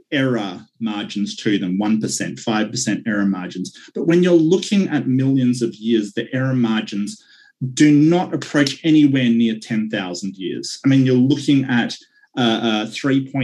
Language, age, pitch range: English, 30-49, 110-145 Hz